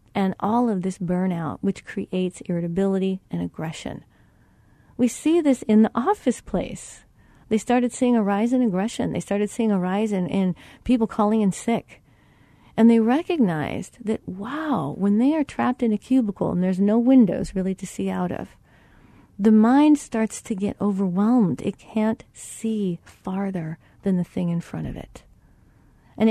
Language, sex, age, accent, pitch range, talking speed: English, female, 40-59, American, 180-230 Hz, 170 wpm